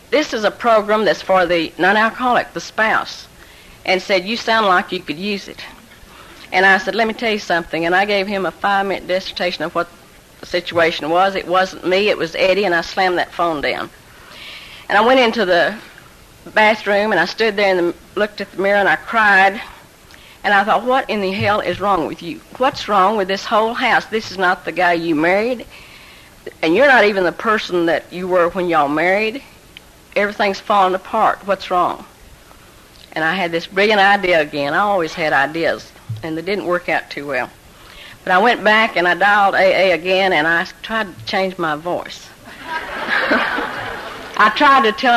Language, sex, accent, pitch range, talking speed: English, female, American, 180-215 Hz, 195 wpm